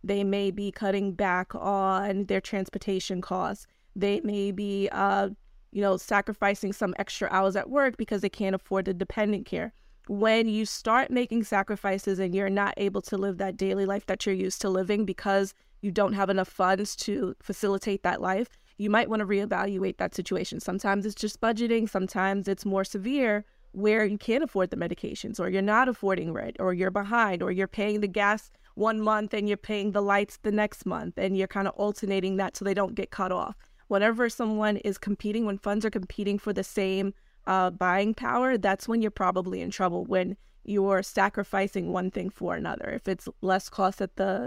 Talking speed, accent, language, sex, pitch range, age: 195 wpm, American, English, female, 195-215 Hz, 20-39